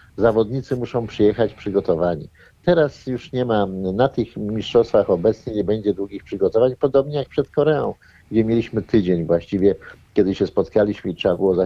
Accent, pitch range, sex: native, 100-130 Hz, male